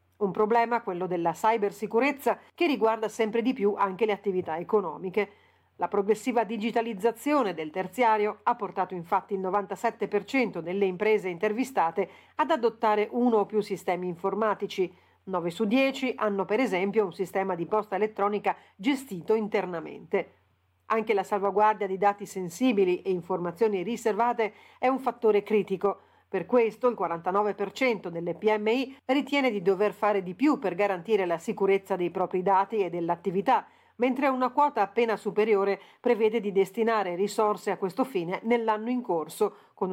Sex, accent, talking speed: female, native, 145 wpm